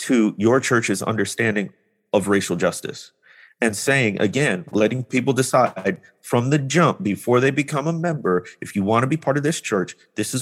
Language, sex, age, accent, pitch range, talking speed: English, male, 40-59, American, 110-145 Hz, 185 wpm